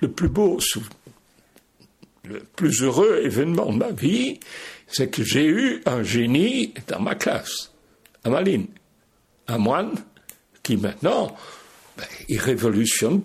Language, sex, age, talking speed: French, male, 60-79, 120 wpm